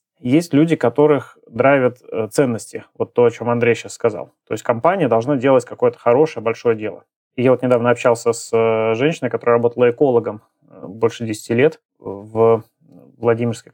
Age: 20-39